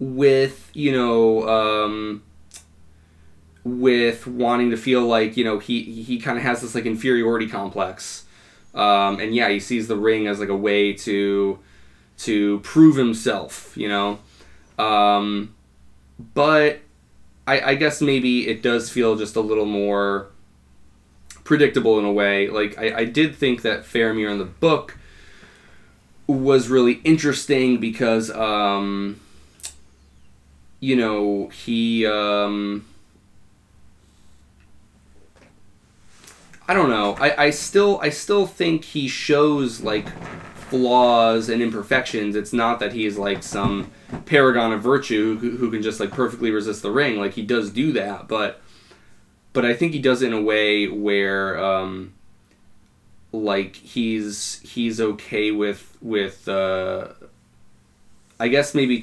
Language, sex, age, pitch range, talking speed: English, male, 20-39, 100-120 Hz, 135 wpm